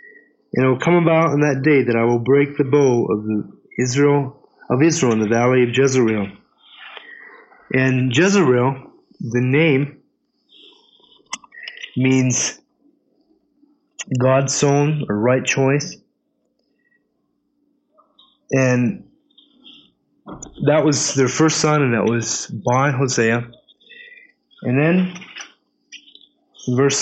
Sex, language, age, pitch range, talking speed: male, English, 30-49, 125-160 Hz, 105 wpm